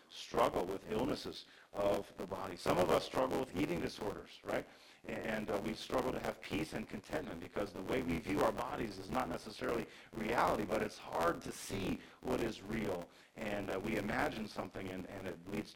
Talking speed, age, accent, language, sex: 195 wpm, 50-69, American, English, male